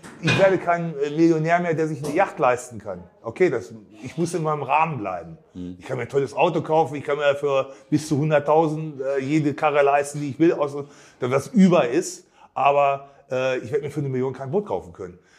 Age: 30-49